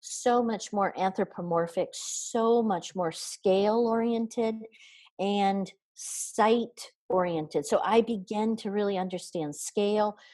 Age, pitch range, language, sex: 50-69, 170-230 Hz, English, female